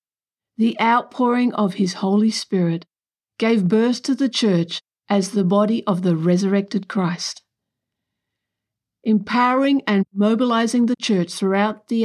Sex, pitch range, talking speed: female, 185-245 Hz, 125 wpm